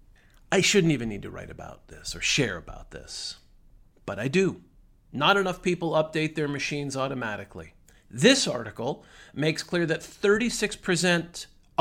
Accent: American